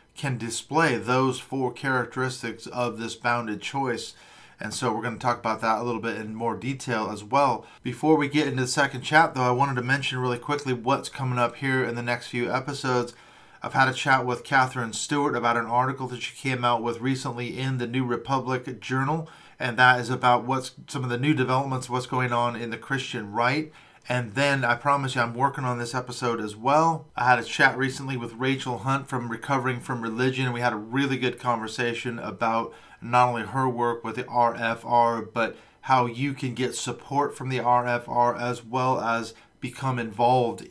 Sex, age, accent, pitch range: male, 40-59, American, 120-130 Hz